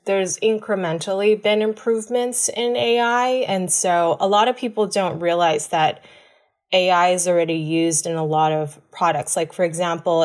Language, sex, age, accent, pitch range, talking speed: English, female, 20-39, American, 160-190 Hz, 160 wpm